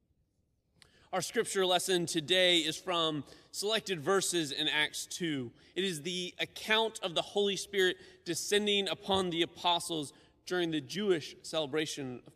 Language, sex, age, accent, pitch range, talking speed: English, male, 30-49, American, 150-190 Hz, 135 wpm